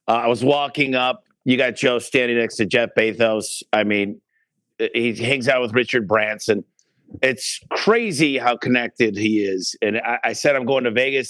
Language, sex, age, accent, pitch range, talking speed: English, male, 50-69, American, 110-135 Hz, 185 wpm